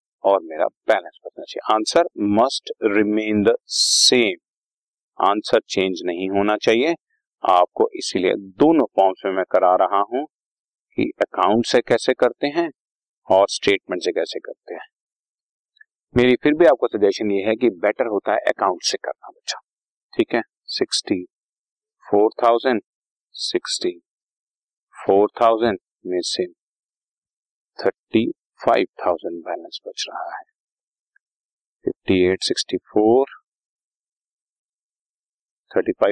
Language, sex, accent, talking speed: Hindi, male, native, 90 wpm